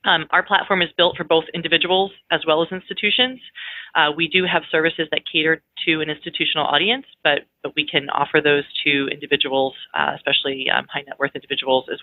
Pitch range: 145-165 Hz